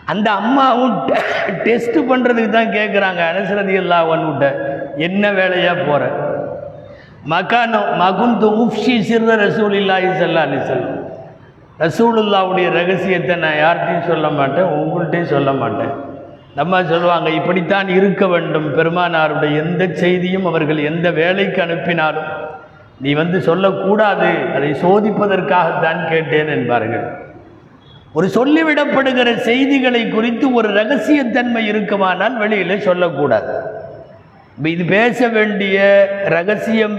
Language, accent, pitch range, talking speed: Tamil, native, 165-215 Hz, 95 wpm